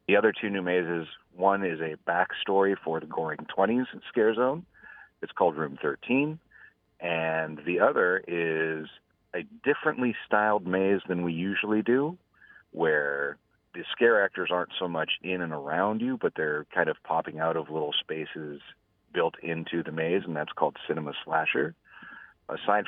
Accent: American